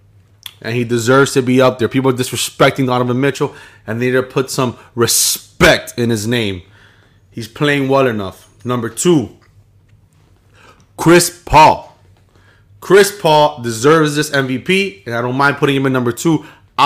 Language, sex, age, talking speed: English, male, 20-39, 155 wpm